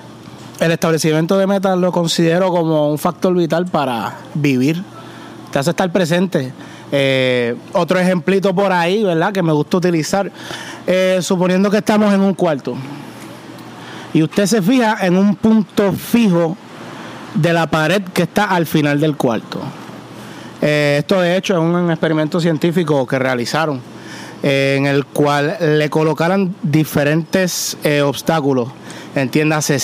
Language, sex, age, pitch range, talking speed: Spanish, male, 30-49, 145-190 Hz, 140 wpm